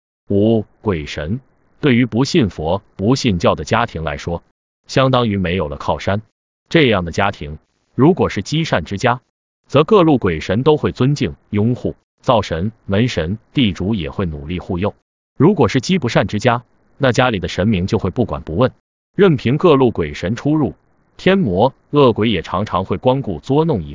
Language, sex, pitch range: Chinese, male, 90-130 Hz